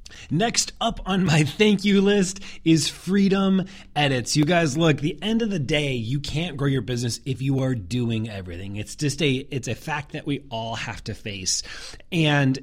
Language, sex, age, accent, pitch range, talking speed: English, male, 30-49, American, 130-180 Hz, 195 wpm